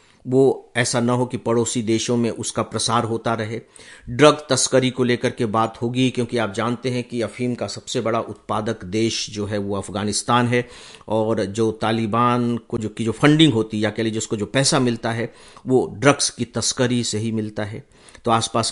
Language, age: Hindi, 50-69